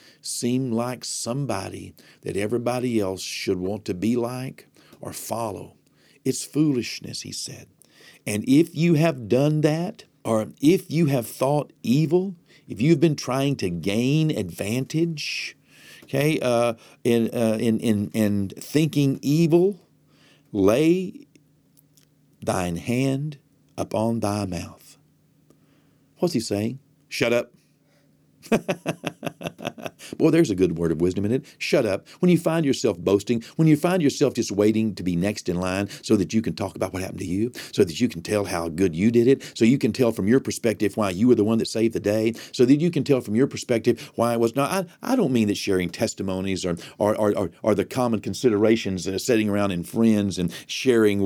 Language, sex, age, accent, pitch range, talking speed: English, male, 50-69, American, 100-145 Hz, 180 wpm